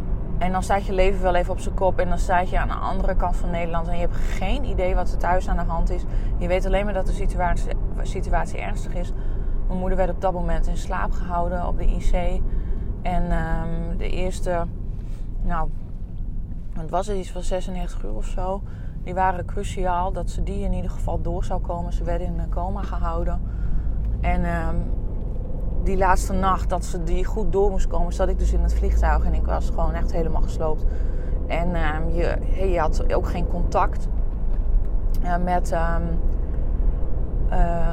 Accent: Dutch